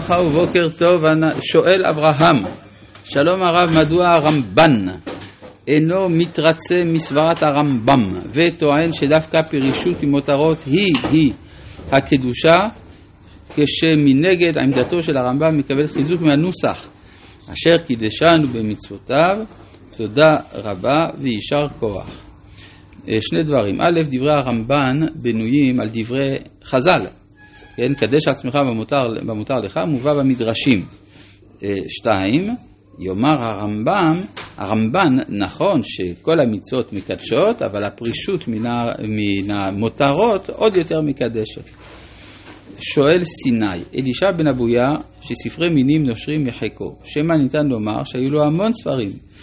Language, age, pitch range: Hebrew, 50-69, 110-160 Hz